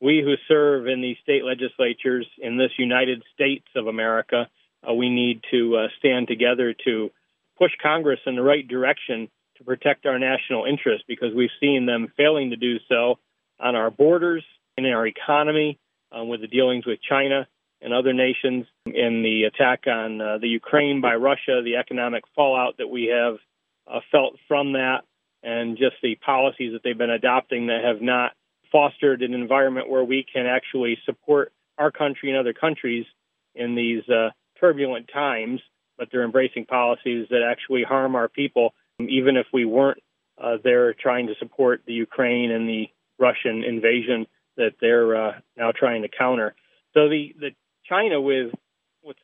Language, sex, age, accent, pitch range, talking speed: English, male, 40-59, American, 120-140 Hz, 170 wpm